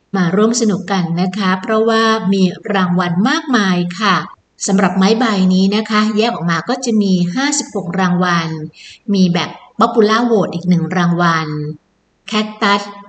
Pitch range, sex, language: 180-220 Hz, female, English